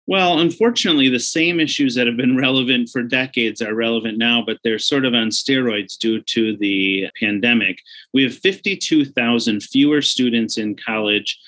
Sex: male